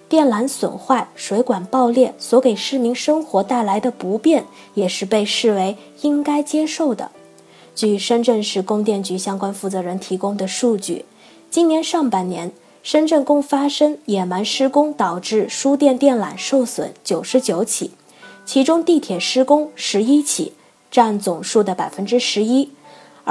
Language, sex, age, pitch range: Chinese, female, 20-39, 195-265 Hz